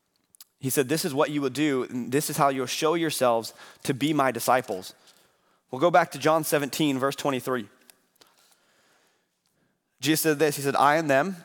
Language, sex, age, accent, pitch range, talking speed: English, male, 30-49, American, 120-145 Hz, 185 wpm